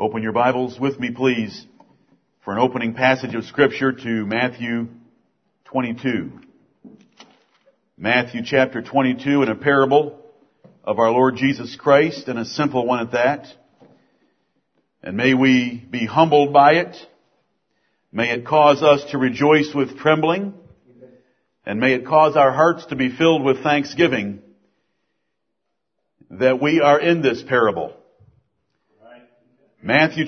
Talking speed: 130 wpm